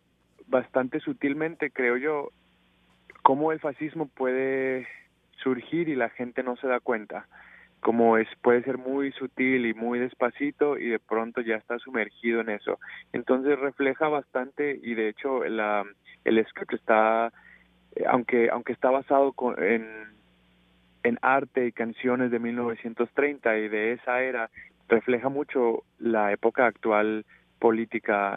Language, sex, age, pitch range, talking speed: Spanish, male, 30-49, 110-130 Hz, 135 wpm